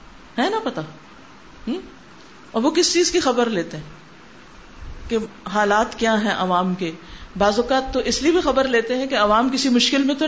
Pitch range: 200-270 Hz